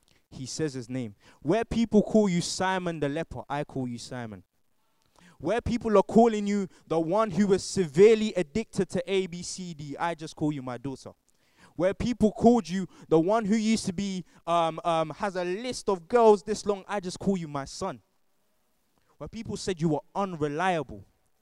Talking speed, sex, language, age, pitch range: 180 wpm, male, English, 20-39, 135-195 Hz